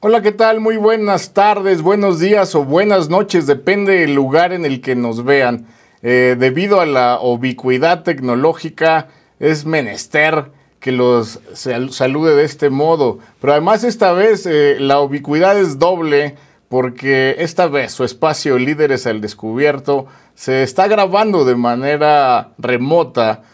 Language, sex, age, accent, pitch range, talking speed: Spanish, male, 50-69, Mexican, 120-165 Hz, 145 wpm